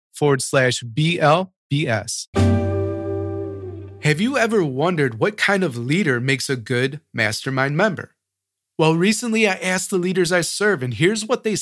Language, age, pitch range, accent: English, 30-49, 120-165 Hz, American